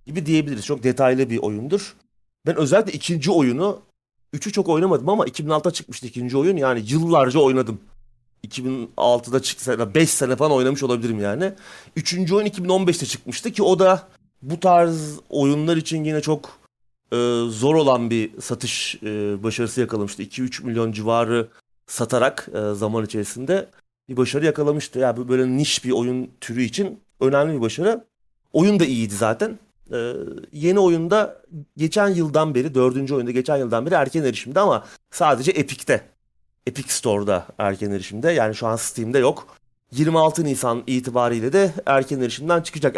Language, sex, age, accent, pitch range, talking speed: Turkish, male, 30-49, native, 115-160 Hz, 150 wpm